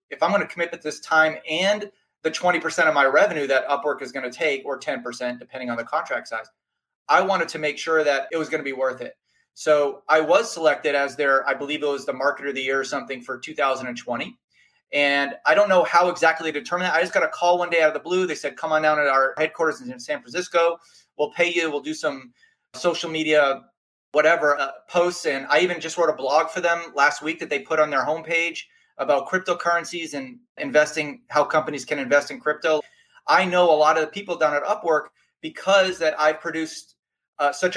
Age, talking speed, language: 30-49, 230 wpm, English